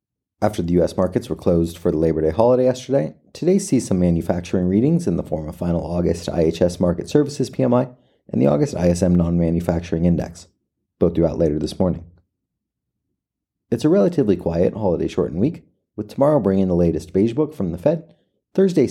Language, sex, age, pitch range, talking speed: English, male, 30-49, 85-115 Hz, 180 wpm